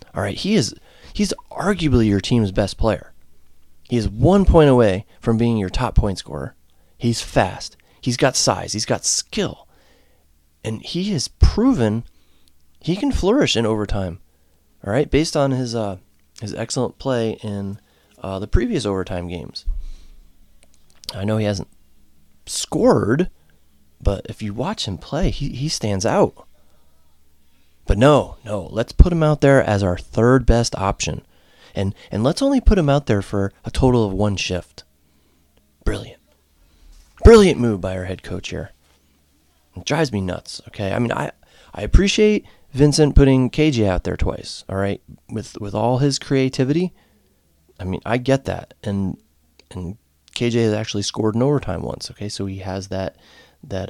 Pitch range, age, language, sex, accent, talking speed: 75-120 Hz, 30-49, English, male, American, 165 wpm